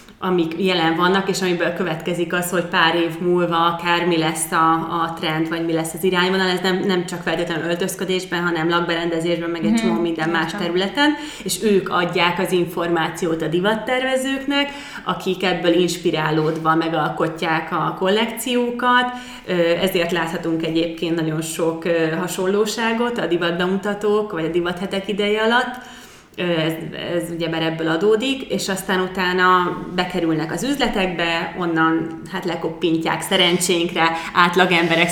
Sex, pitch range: female, 165-195 Hz